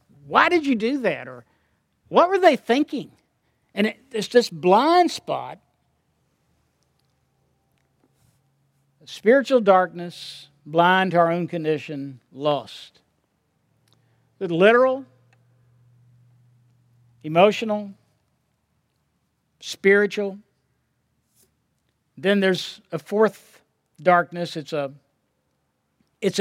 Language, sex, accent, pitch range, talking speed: English, male, American, 125-200 Hz, 75 wpm